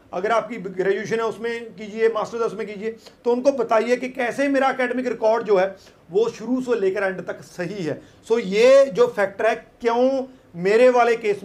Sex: male